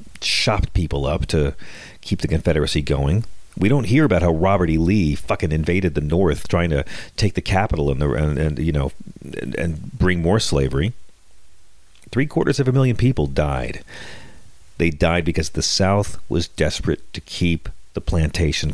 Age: 40-59